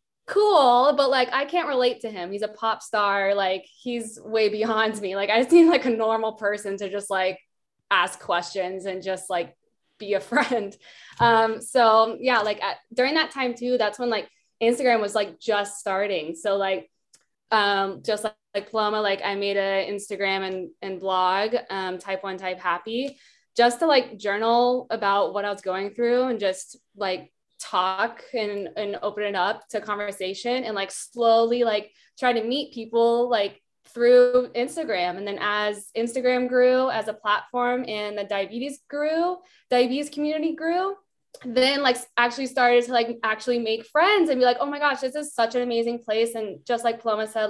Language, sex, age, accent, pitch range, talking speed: English, female, 20-39, American, 205-245 Hz, 185 wpm